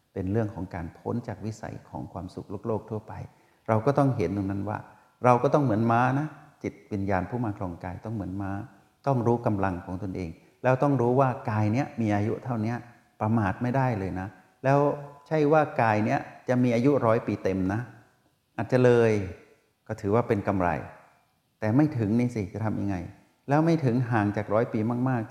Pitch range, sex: 100-125 Hz, male